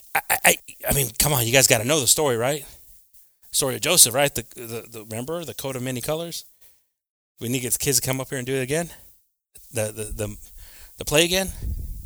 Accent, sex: American, male